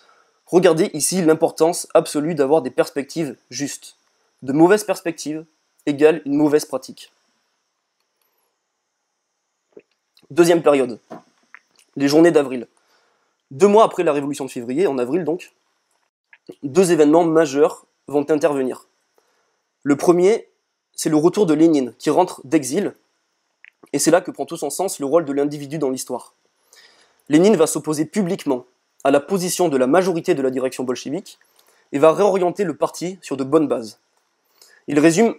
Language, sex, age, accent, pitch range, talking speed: French, male, 20-39, French, 145-185 Hz, 140 wpm